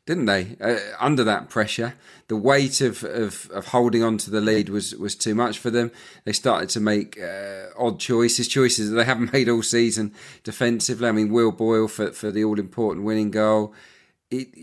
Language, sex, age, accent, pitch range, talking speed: English, male, 40-59, British, 105-125 Hz, 200 wpm